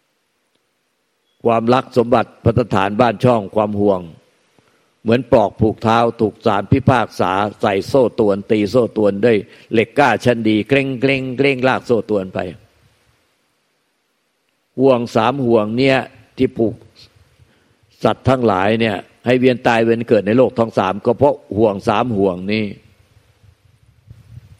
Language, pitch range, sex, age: Thai, 105-120 Hz, male, 60-79